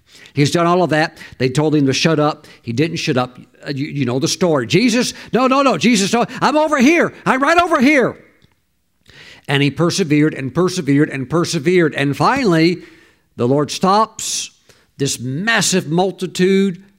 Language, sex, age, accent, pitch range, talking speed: English, male, 50-69, American, 140-180 Hz, 170 wpm